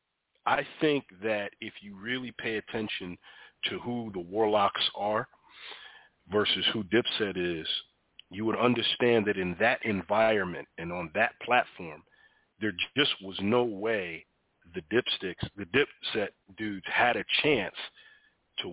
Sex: male